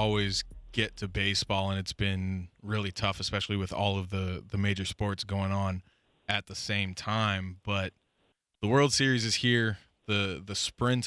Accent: American